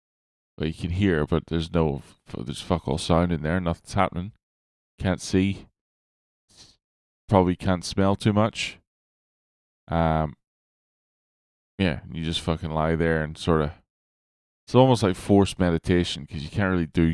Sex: male